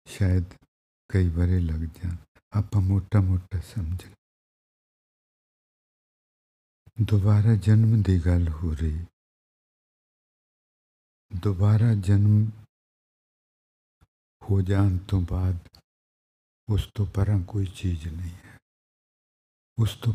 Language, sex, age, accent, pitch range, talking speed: English, male, 60-79, Indian, 90-115 Hz, 55 wpm